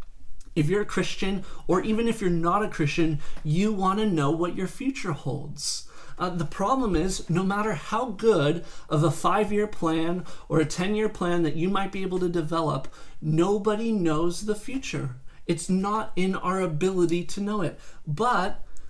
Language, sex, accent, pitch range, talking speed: English, male, American, 160-200 Hz, 175 wpm